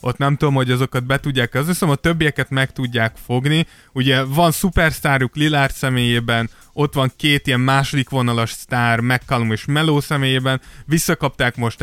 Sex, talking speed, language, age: male, 160 wpm, Hungarian, 20-39